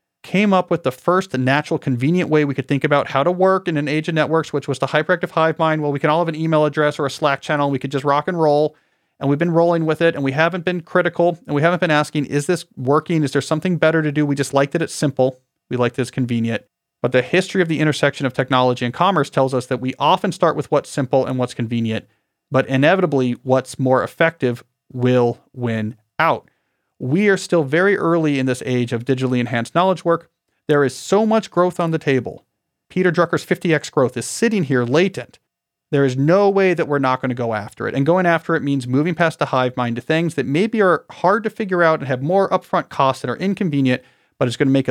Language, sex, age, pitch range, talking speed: English, male, 40-59, 130-170 Hz, 245 wpm